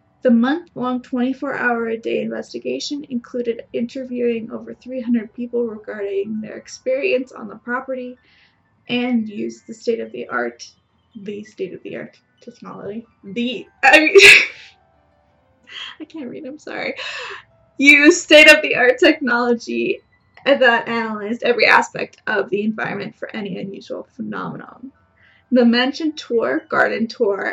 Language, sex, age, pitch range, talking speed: English, female, 10-29, 220-275 Hz, 105 wpm